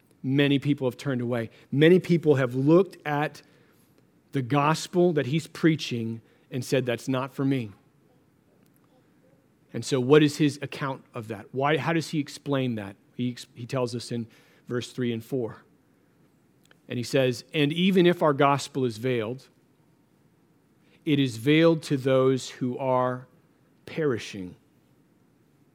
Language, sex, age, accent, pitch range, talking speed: English, male, 40-59, American, 120-150 Hz, 145 wpm